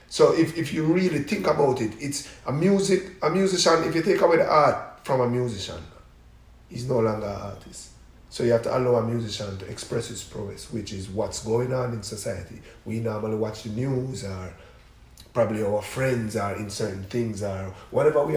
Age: 30-49